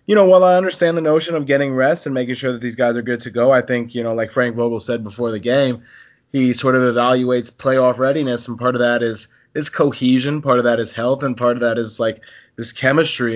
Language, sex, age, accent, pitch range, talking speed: English, male, 20-39, American, 120-145 Hz, 255 wpm